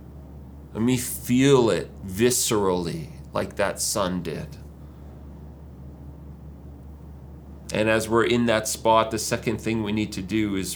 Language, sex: English, male